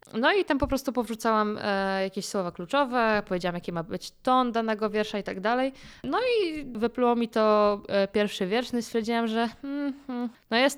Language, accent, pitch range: Polish, native, 200-250 Hz